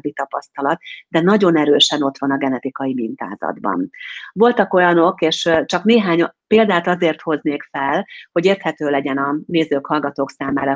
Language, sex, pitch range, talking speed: Hungarian, female, 140-180 Hz, 140 wpm